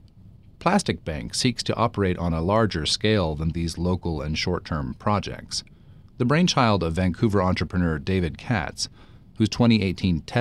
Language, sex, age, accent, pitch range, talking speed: English, male, 40-59, American, 85-115 Hz, 140 wpm